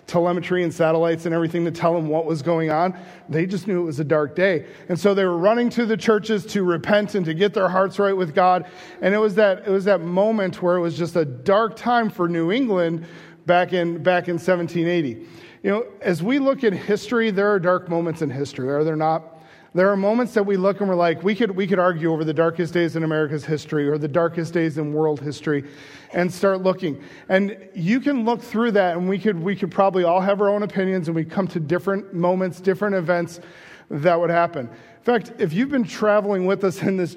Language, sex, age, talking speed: English, male, 40-59, 235 wpm